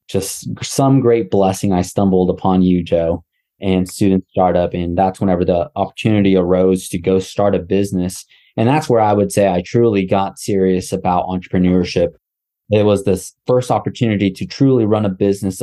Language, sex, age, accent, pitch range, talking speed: English, male, 20-39, American, 90-105 Hz, 175 wpm